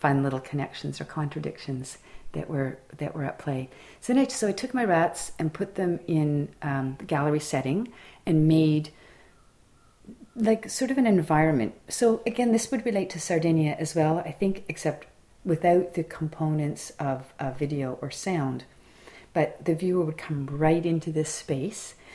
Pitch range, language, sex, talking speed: 140-180 Hz, English, female, 175 wpm